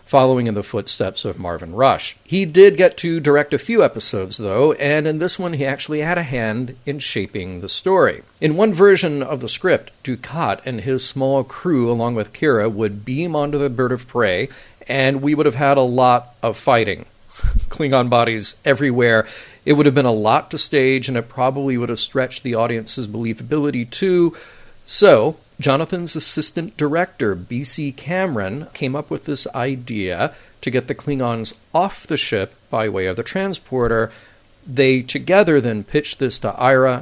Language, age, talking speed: English, 40-59, 180 wpm